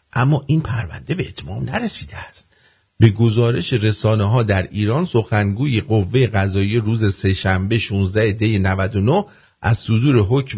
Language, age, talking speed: English, 50-69, 135 wpm